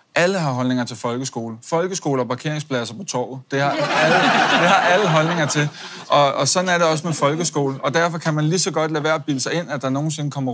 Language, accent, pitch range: Danish, native, 130-150 Hz